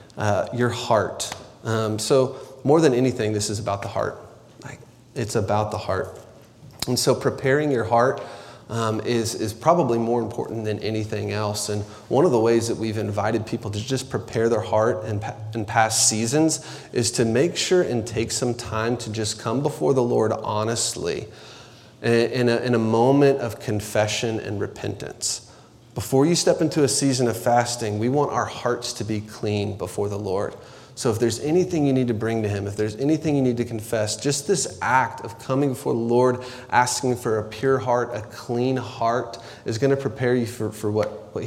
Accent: American